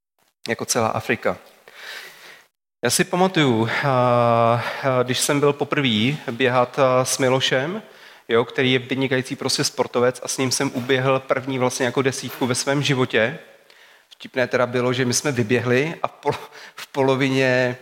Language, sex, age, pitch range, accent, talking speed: Czech, male, 30-49, 125-150 Hz, native, 140 wpm